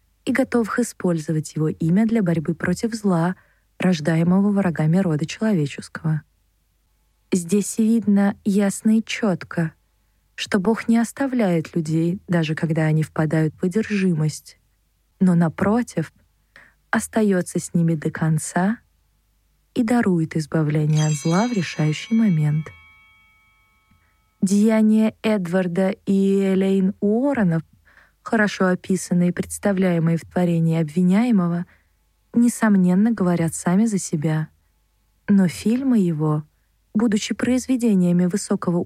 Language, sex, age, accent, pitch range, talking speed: Russian, female, 20-39, native, 160-205 Hz, 105 wpm